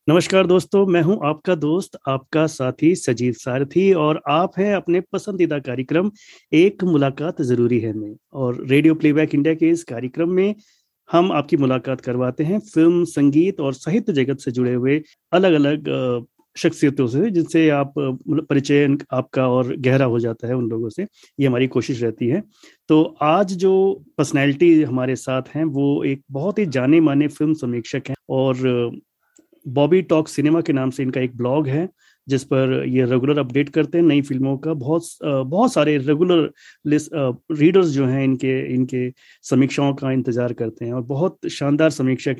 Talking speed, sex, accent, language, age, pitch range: 170 wpm, male, native, Hindi, 30-49, 130-165 Hz